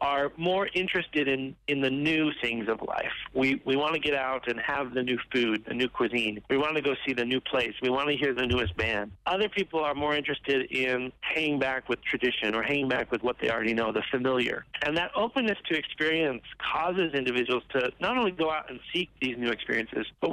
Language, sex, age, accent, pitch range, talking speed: English, male, 40-59, American, 125-155 Hz, 225 wpm